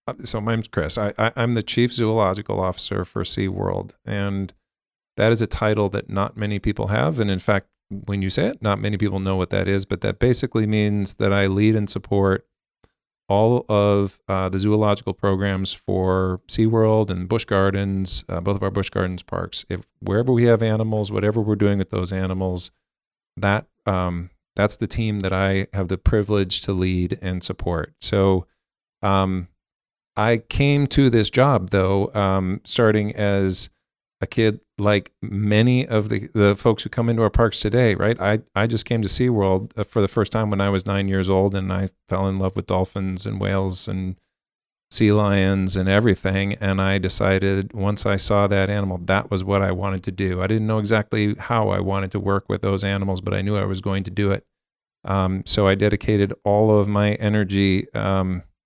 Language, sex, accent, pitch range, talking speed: English, male, American, 95-110 Hz, 195 wpm